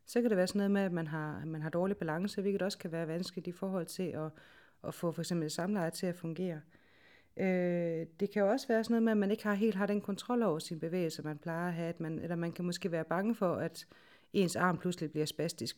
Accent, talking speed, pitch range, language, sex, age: native, 260 wpm, 165-190 Hz, Danish, female, 30-49